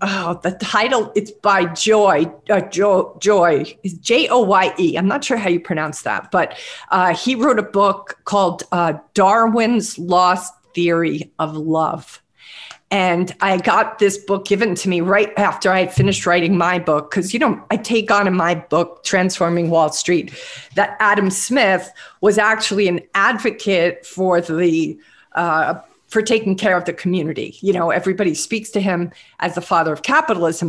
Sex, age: female, 50-69